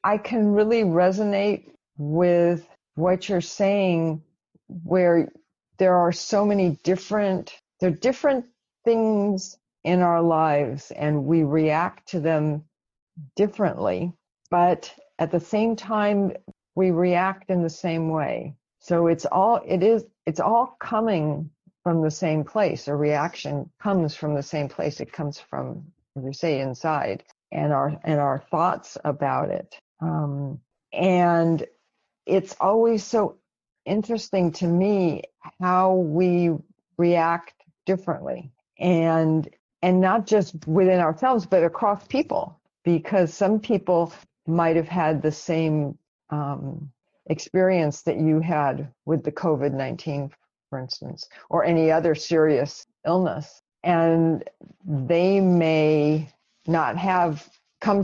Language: English